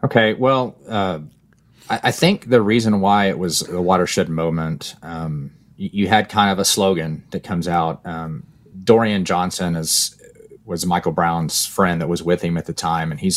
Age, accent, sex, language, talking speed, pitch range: 30-49, American, male, English, 190 wpm, 85-100 Hz